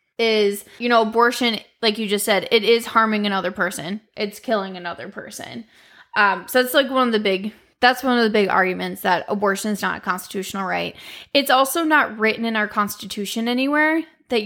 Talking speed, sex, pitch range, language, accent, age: 195 wpm, female, 200-250 Hz, English, American, 20-39